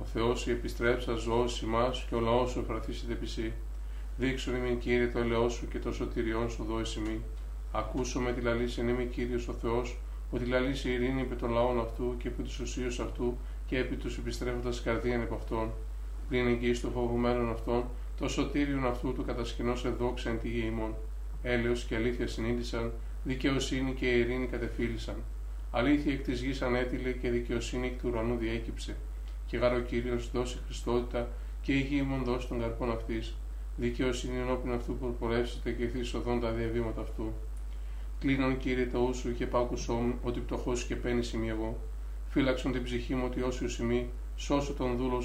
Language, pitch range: Greek, 115-125 Hz